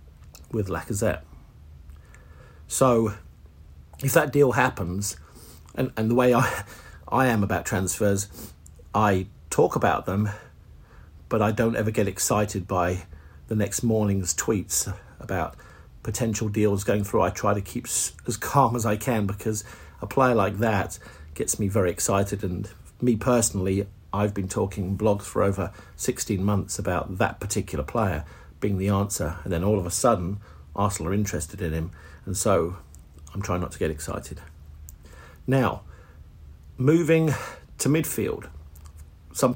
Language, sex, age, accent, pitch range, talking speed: English, male, 50-69, British, 80-105 Hz, 145 wpm